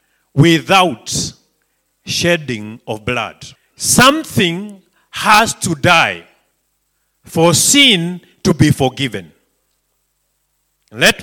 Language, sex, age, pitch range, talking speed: English, male, 50-69, 140-210 Hz, 75 wpm